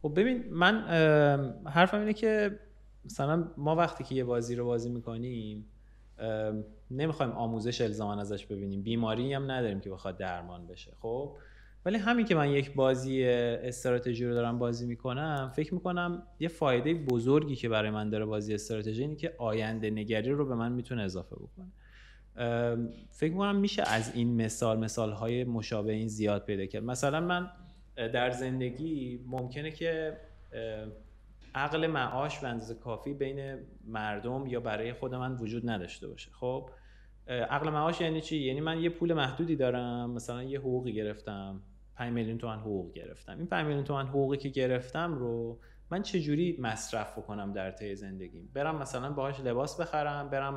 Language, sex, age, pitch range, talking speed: Persian, male, 20-39, 110-150 Hz, 160 wpm